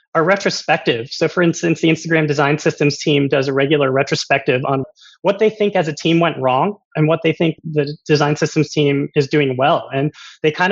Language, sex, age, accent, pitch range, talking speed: English, male, 30-49, American, 145-180 Hz, 205 wpm